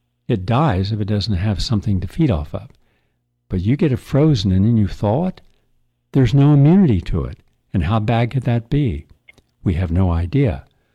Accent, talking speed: American, 195 wpm